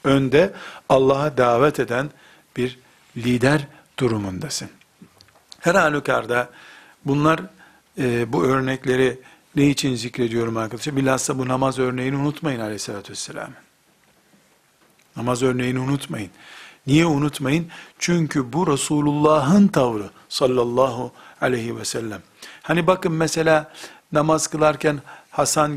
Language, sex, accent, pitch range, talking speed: Turkish, male, native, 130-180 Hz, 100 wpm